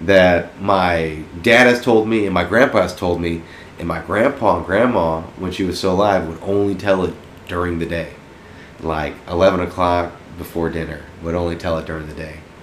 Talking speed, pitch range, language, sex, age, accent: 195 wpm, 80-100 Hz, English, male, 30-49, American